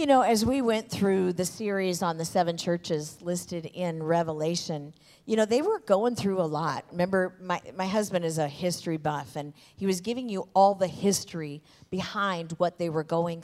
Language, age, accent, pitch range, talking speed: English, 50-69, American, 175-230 Hz, 195 wpm